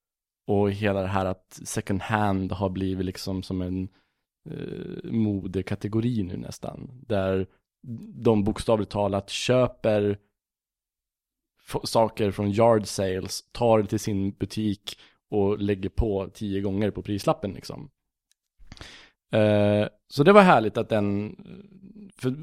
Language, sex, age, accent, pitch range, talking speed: Swedish, male, 20-39, Norwegian, 95-115 Hz, 125 wpm